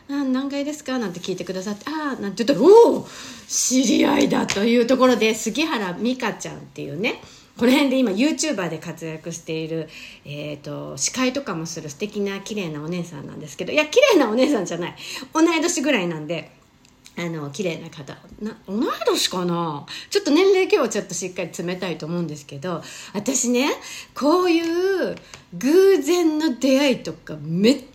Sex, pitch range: female, 175-265 Hz